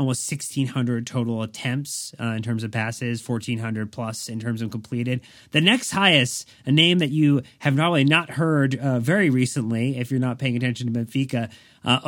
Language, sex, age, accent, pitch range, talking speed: English, male, 30-49, American, 115-130 Hz, 190 wpm